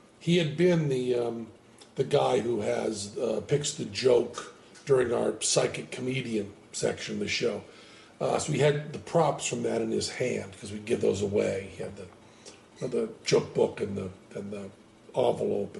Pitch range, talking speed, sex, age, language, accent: 110-150 Hz, 180 wpm, male, 50-69, English, American